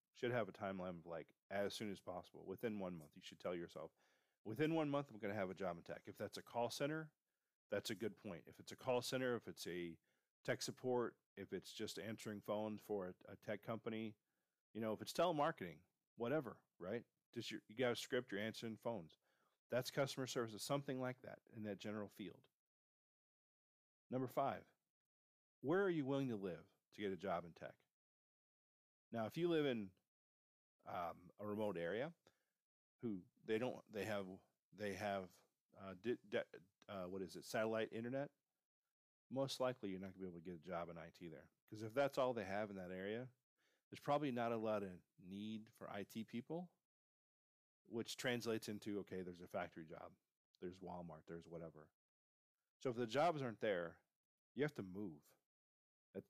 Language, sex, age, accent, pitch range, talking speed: English, male, 40-59, American, 95-125 Hz, 190 wpm